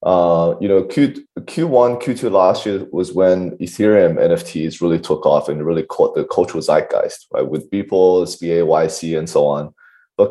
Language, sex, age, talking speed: English, male, 20-39, 180 wpm